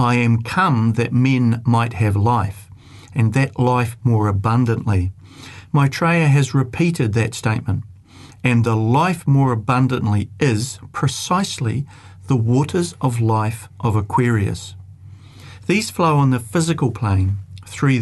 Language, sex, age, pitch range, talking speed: English, male, 50-69, 105-135 Hz, 125 wpm